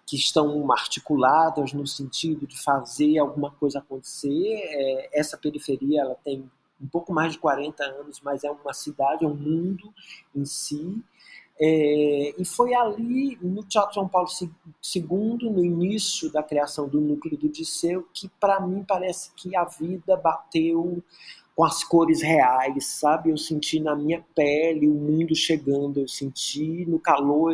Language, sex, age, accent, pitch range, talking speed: Portuguese, male, 40-59, Brazilian, 145-180 Hz, 155 wpm